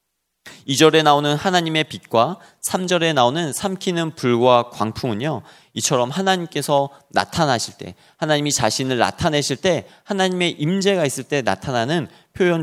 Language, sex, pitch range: Korean, male, 125-175 Hz